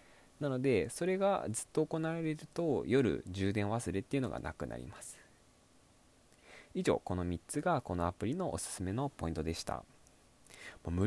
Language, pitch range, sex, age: Japanese, 85-130 Hz, male, 20-39